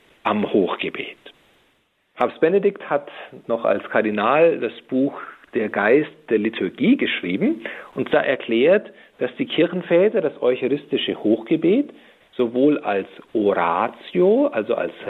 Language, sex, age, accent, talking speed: German, male, 50-69, German, 115 wpm